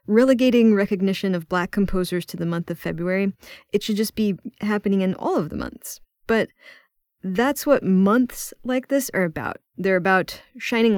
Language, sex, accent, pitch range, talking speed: English, female, American, 180-225 Hz, 170 wpm